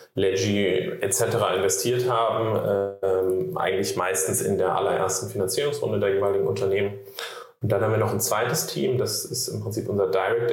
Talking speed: 155 wpm